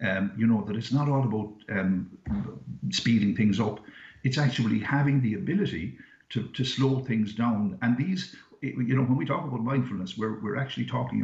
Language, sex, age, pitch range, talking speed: English, male, 60-79, 105-130 Hz, 185 wpm